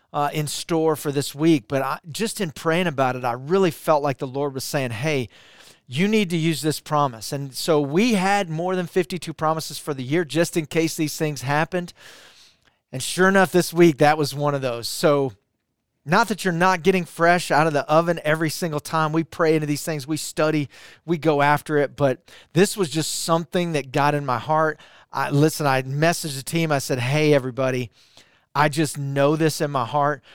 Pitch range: 140-175 Hz